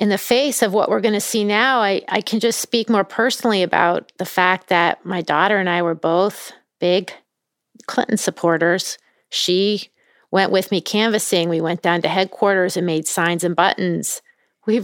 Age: 40-59